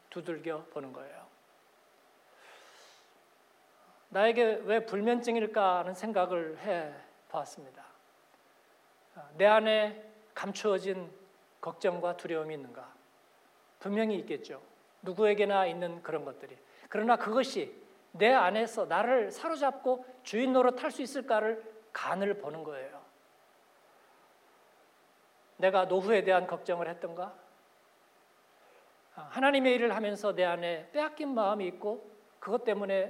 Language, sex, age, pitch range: Korean, male, 40-59, 185-225 Hz